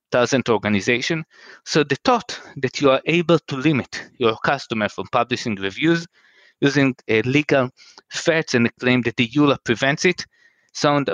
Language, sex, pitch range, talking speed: English, male, 125-170 Hz, 155 wpm